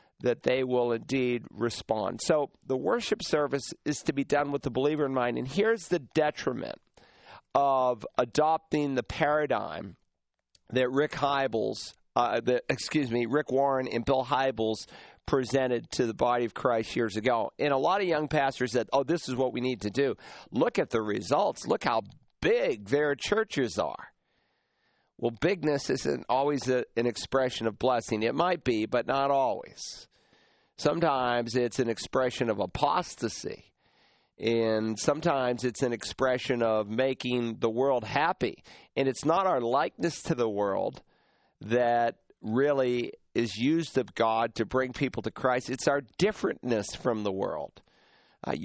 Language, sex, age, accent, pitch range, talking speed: English, male, 50-69, American, 120-140 Hz, 155 wpm